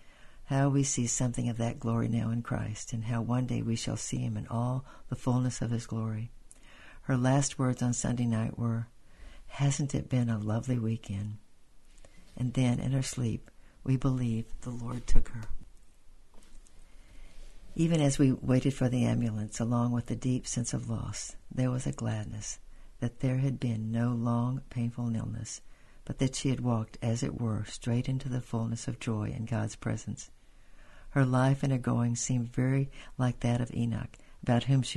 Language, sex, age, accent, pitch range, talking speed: English, female, 60-79, American, 110-130 Hz, 180 wpm